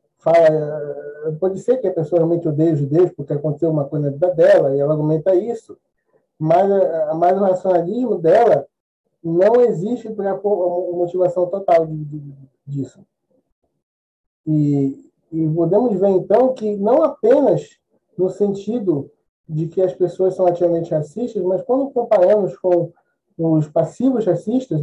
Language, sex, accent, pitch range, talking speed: Portuguese, male, Brazilian, 155-210 Hz, 140 wpm